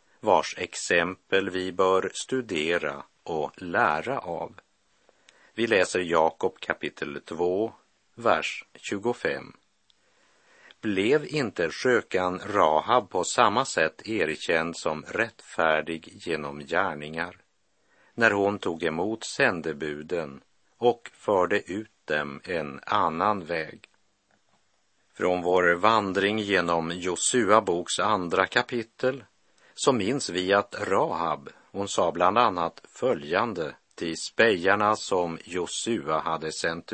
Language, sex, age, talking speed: Swedish, male, 50-69, 100 wpm